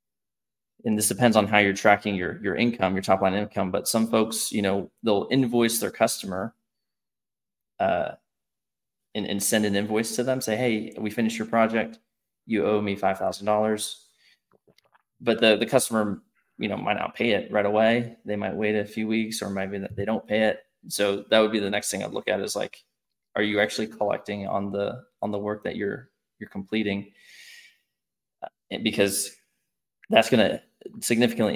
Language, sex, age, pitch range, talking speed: English, male, 20-39, 100-110 Hz, 180 wpm